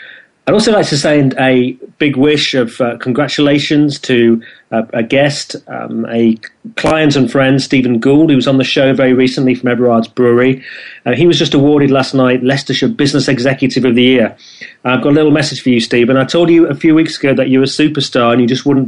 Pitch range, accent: 125-150 Hz, British